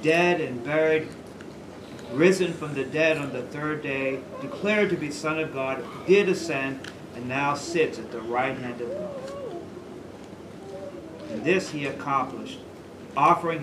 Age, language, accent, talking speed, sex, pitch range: 50-69, English, American, 145 wpm, male, 125-165 Hz